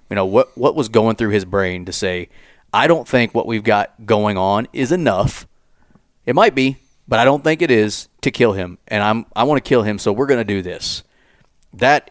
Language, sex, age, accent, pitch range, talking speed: English, male, 30-49, American, 95-115 Hz, 235 wpm